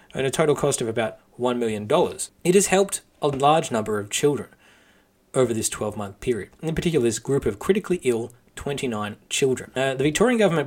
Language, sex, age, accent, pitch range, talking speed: English, male, 20-39, Australian, 115-160 Hz, 180 wpm